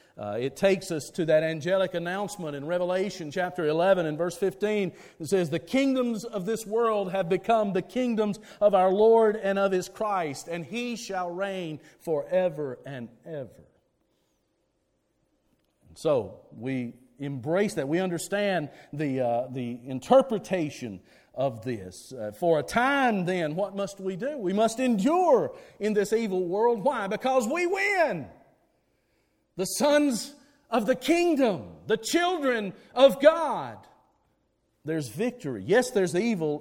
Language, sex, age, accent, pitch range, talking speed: English, male, 50-69, American, 165-240 Hz, 140 wpm